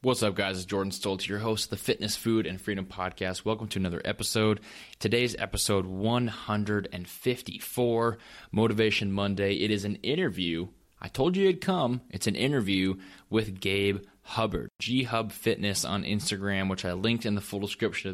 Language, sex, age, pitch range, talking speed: English, male, 20-39, 95-110 Hz, 170 wpm